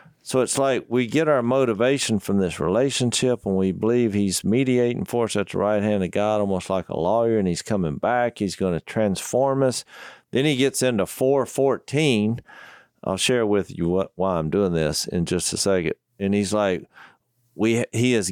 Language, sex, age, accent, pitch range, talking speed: English, male, 50-69, American, 105-140 Hz, 195 wpm